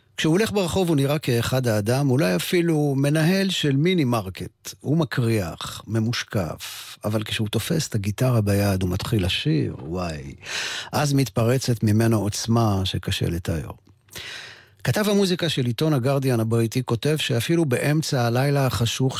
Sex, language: male, Hebrew